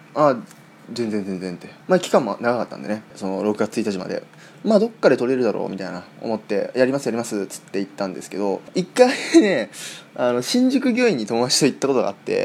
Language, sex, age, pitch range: Japanese, male, 20-39, 110-160 Hz